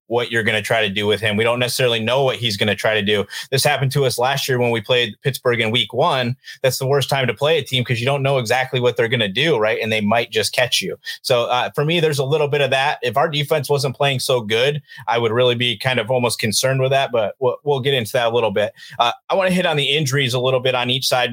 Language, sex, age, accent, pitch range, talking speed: English, male, 30-49, American, 115-135 Hz, 305 wpm